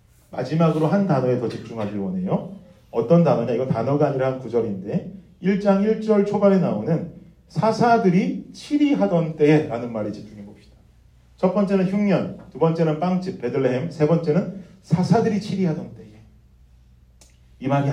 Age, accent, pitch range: 40-59, native, 125-195 Hz